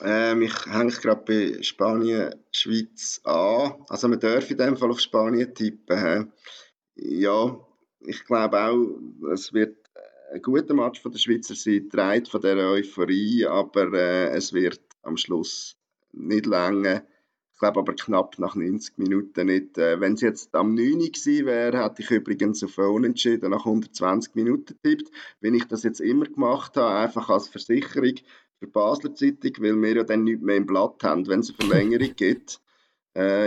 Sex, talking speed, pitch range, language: male, 170 wpm, 100-125 Hz, German